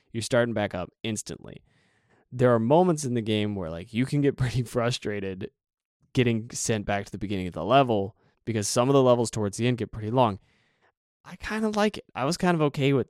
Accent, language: American, English